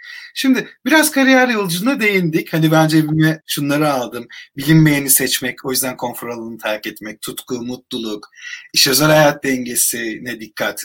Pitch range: 130-190 Hz